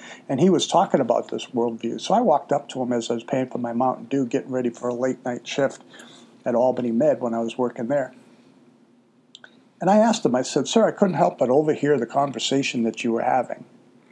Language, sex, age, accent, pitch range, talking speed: English, male, 60-79, American, 125-160 Hz, 230 wpm